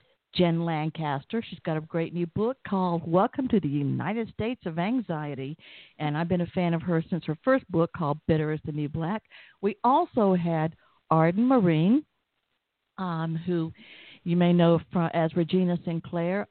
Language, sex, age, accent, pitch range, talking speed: English, female, 50-69, American, 160-220 Hz, 165 wpm